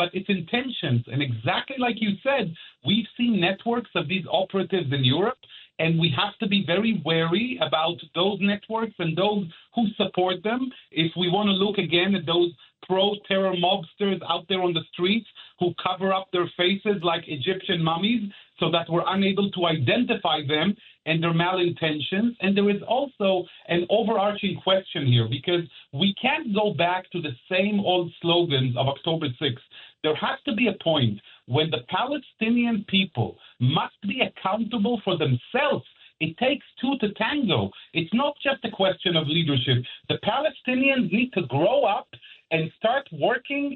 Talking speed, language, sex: 165 wpm, English, male